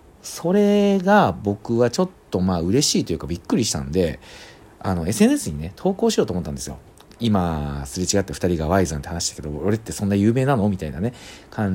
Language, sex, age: Japanese, male, 40-59